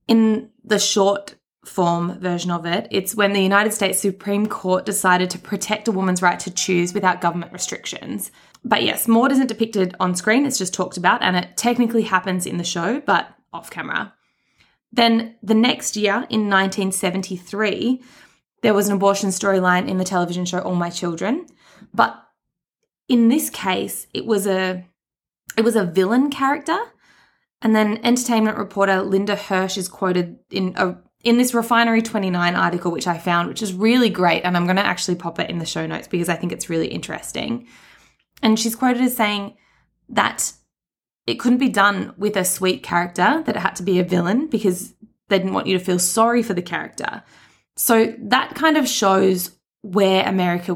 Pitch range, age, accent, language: 180-225 Hz, 20-39, Australian, English